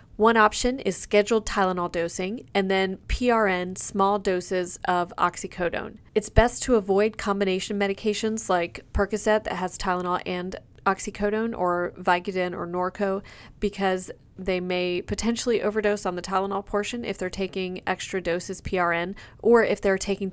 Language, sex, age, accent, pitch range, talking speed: English, female, 30-49, American, 180-215 Hz, 145 wpm